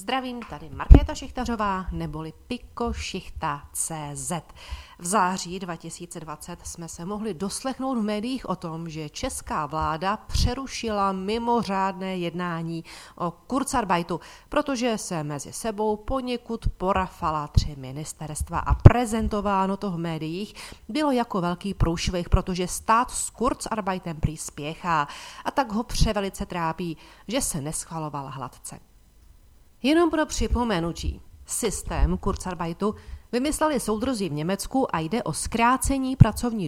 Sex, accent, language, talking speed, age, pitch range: female, native, Czech, 120 wpm, 40-59, 165-225 Hz